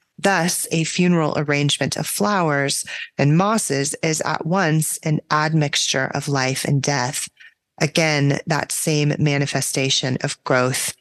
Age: 30-49